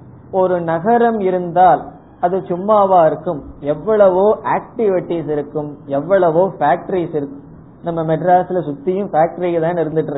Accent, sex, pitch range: native, male, 150-185 Hz